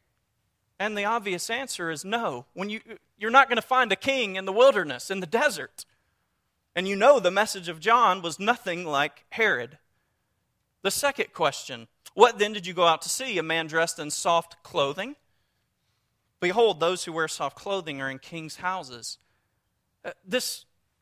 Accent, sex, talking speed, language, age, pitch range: American, male, 175 wpm, English, 40-59, 145-210 Hz